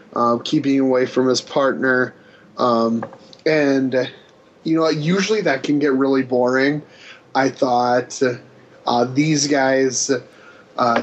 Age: 10-29